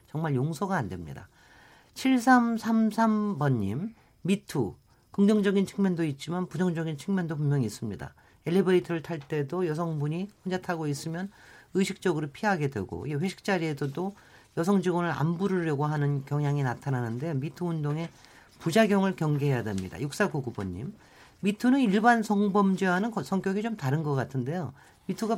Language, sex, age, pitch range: Korean, male, 40-59, 145-195 Hz